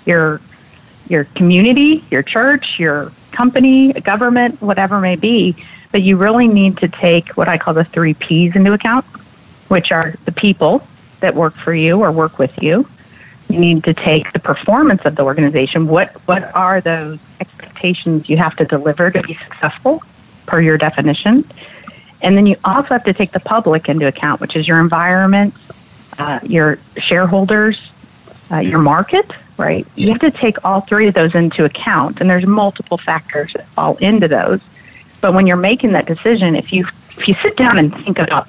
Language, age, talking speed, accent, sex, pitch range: English, 40-59, 180 wpm, American, female, 160-210 Hz